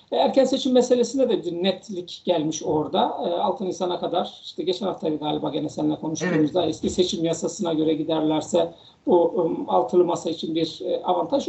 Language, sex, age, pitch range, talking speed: Turkish, male, 50-69, 170-220 Hz, 150 wpm